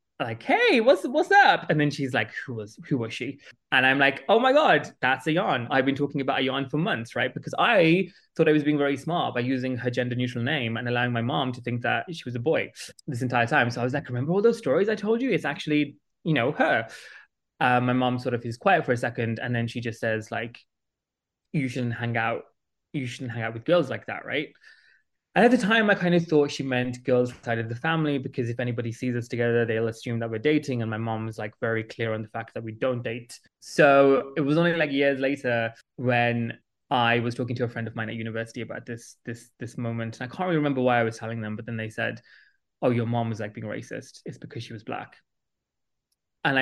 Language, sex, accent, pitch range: English, male, British, 115-140 Hz